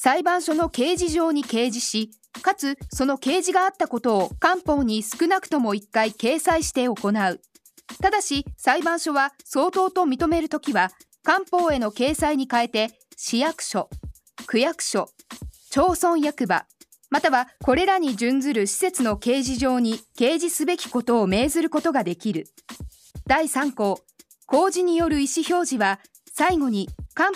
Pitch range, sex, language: 245-345 Hz, female, Japanese